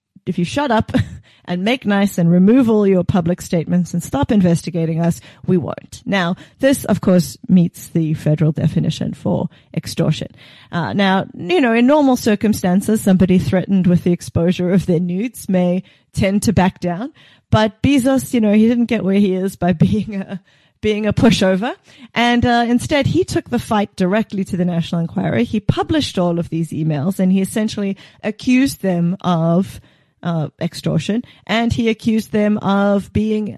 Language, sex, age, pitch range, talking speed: English, female, 30-49, 175-215 Hz, 175 wpm